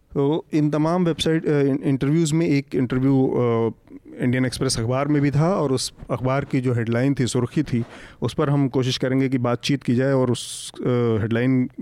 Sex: male